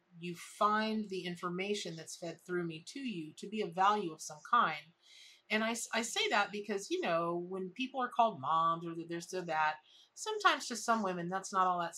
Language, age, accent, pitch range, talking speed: English, 40-59, American, 160-205 Hz, 205 wpm